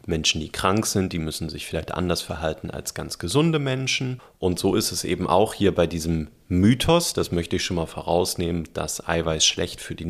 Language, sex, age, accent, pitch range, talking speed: German, male, 40-59, German, 85-110 Hz, 210 wpm